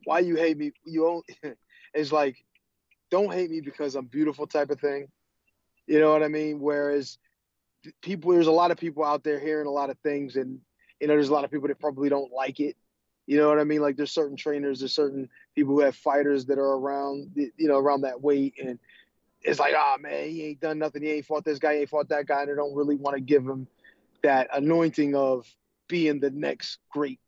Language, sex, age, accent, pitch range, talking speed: English, male, 20-39, American, 140-160 Hz, 235 wpm